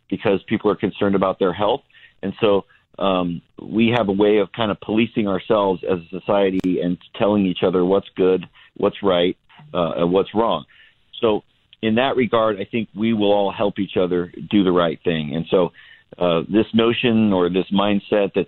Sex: male